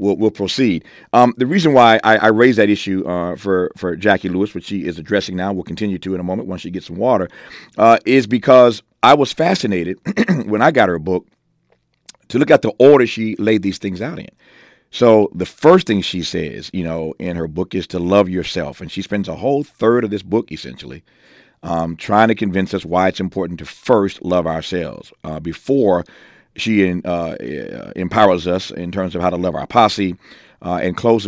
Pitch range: 90-105 Hz